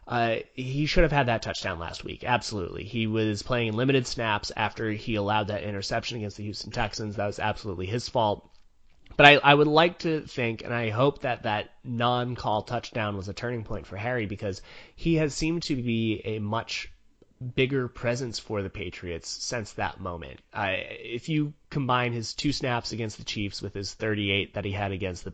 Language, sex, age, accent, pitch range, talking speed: English, male, 30-49, American, 100-130 Hz, 195 wpm